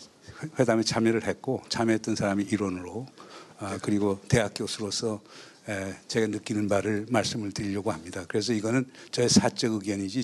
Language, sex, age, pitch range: Korean, male, 60-79, 105-125 Hz